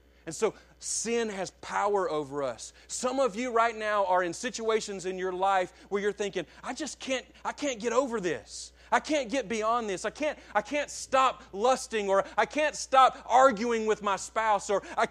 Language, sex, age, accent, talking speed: English, male, 30-49, American, 200 wpm